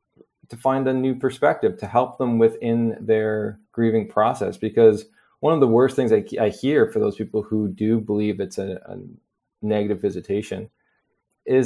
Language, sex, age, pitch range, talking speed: English, male, 20-39, 105-125 Hz, 170 wpm